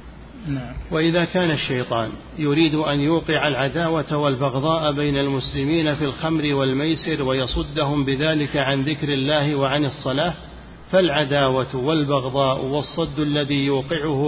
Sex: male